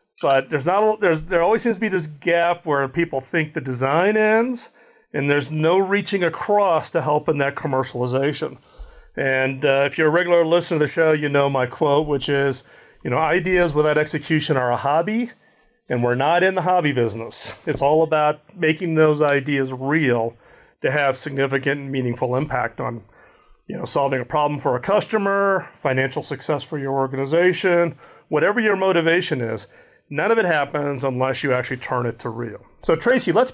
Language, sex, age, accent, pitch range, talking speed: English, male, 40-59, American, 130-170 Hz, 185 wpm